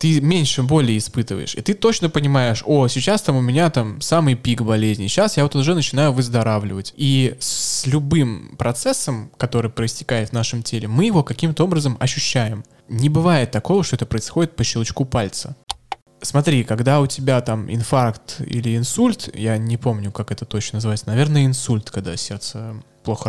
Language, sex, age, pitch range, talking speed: Russian, male, 20-39, 115-150 Hz, 170 wpm